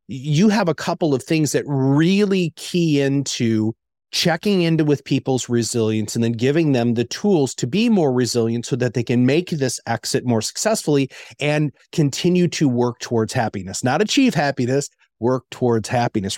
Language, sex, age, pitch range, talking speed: English, male, 30-49, 115-150 Hz, 170 wpm